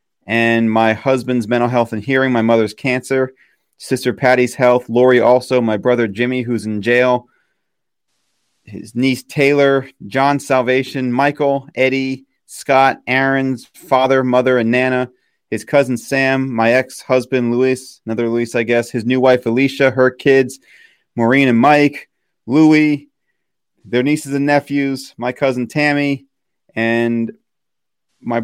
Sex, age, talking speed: male, 30-49, 135 wpm